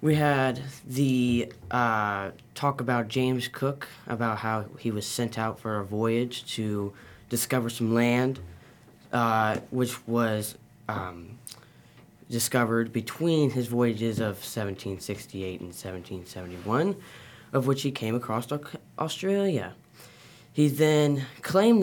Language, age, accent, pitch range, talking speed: English, 10-29, American, 115-140 Hz, 115 wpm